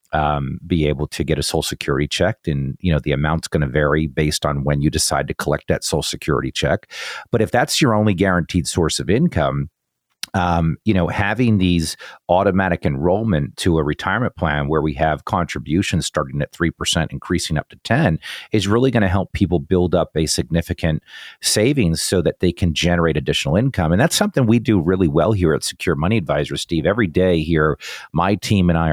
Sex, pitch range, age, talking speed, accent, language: male, 75-90 Hz, 40-59, 200 wpm, American, English